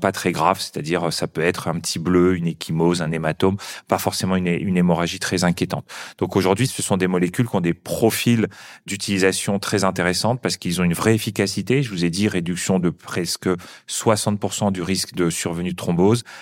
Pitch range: 90-105 Hz